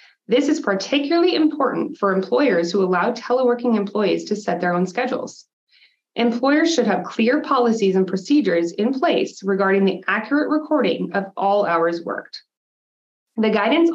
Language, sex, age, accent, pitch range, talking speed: English, female, 20-39, American, 185-255 Hz, 145 wpm